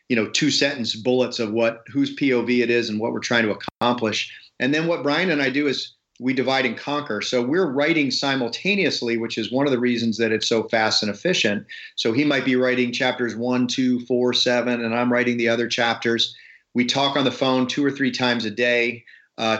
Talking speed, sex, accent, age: 225 wpm, male, American, 40-59